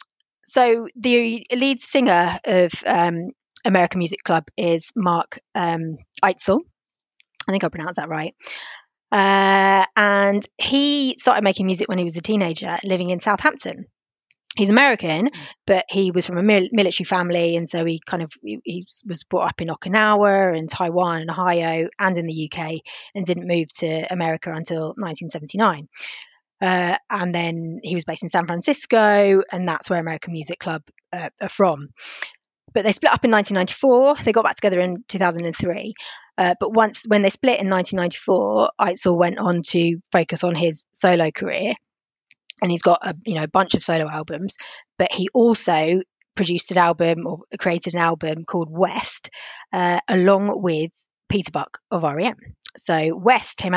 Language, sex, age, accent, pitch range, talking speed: English, female, 30-49, British, 170-200 Hz, 165 wpm